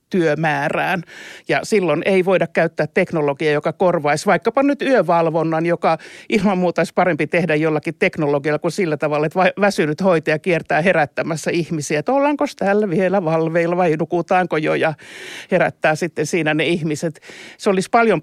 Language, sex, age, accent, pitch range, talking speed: Finnish, male, 60-79, native, 155-200 Hz, 150 wpm